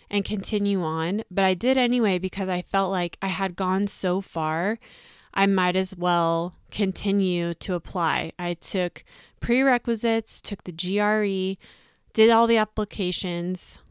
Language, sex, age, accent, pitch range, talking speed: English, female, 20-39, American, 180-215 Hz, 140 wpm